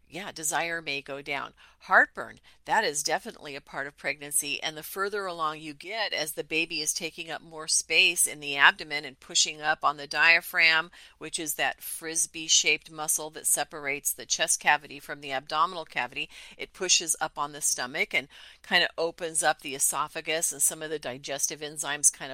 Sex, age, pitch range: female, 40-59, 150-175 Hz